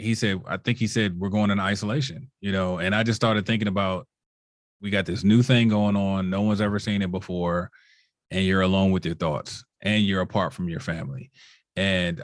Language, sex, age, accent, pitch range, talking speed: English, male, 30-49, American, 95-110 Hz, 215 wpm